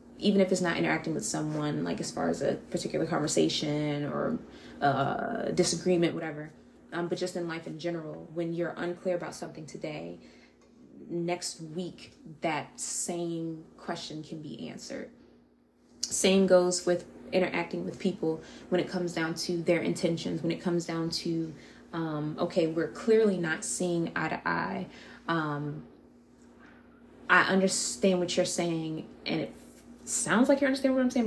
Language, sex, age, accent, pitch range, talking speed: English, female, 20-39, American, 165-190 Hz, 155 wpm